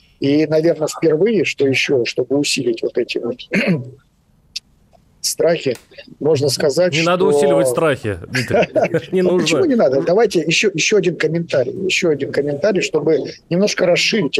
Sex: male